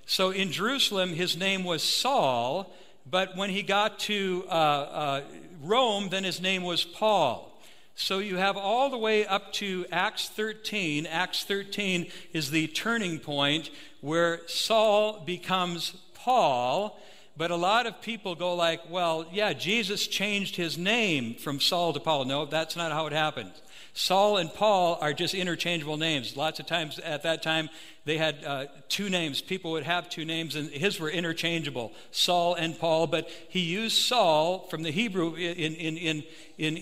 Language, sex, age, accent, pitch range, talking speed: English, male, 60-79, American, 160-195 Hz, 165 wpm